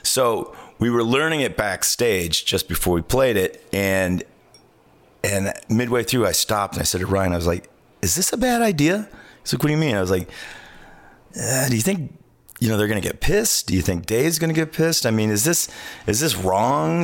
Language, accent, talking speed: English, American, 230 wpm